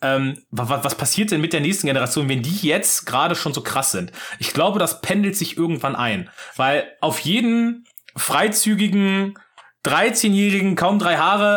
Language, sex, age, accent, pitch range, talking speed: German, male, 30-49, German, 140-200 Hz, 155 wpm